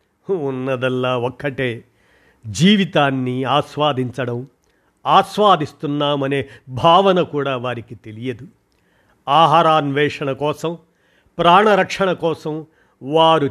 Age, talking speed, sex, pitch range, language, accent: 50-69, 60 wpm, male, 125-160 Hz, Telugu, native